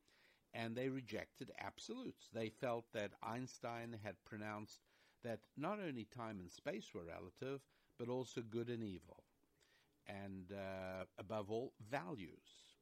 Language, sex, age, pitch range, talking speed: English, male, 60-79, 95-125 Hz, 130 wpm